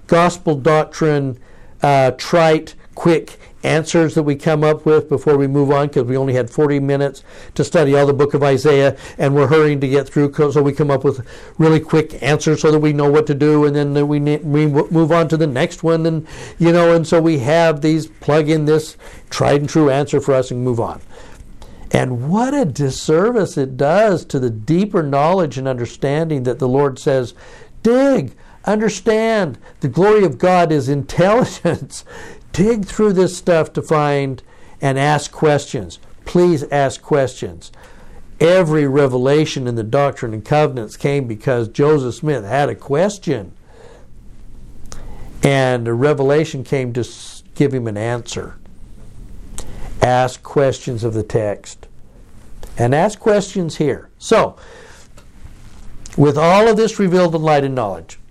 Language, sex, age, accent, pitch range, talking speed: English, male, 60-79, American, 135-160 Hz, 165 wpm